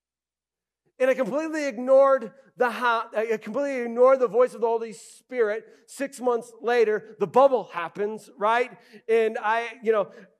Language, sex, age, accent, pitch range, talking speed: English, male, 40-59, American, 155-225 Hz, 150 wpm